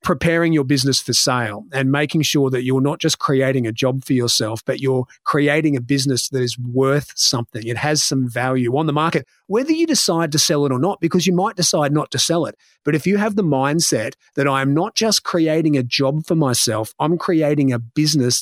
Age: 30-49